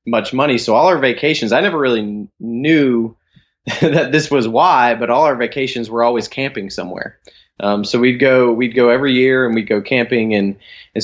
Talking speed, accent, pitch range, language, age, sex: 195 wpm, American, 105-125 Hz, English, 20-39, male